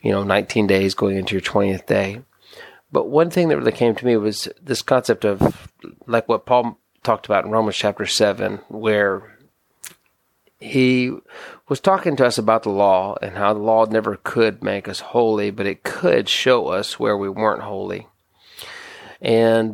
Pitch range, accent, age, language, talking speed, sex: 105-120 Hz, American, 30-49, English, 175 wpm, male